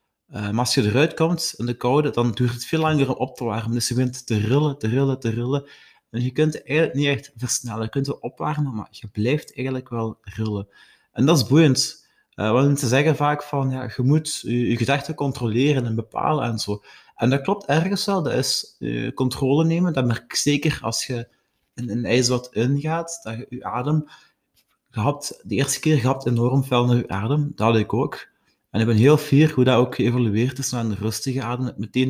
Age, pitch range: 30-49, 115-145 Hz